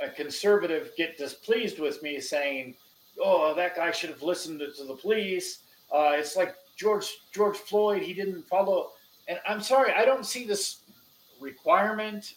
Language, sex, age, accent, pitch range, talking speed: English, male, 40-59, American, 155-205 Hz, 165 wpm